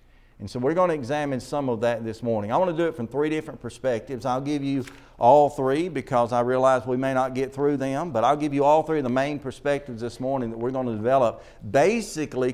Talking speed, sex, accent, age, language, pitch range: 250 wpm, male, American, 50-69, English, 120-160 Hz